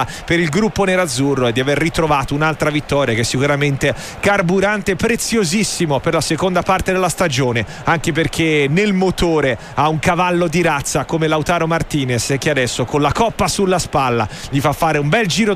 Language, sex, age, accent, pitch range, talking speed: Italian, male, 40-59, native, 145-185 Hz, 175 wpm